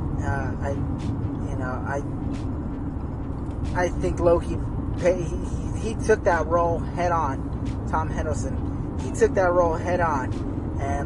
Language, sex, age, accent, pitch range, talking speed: English, male, 20-39, American, 95-135 Hz, 135 wpm